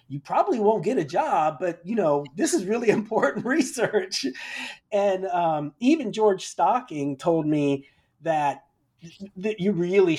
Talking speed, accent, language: 155 wpm, American, English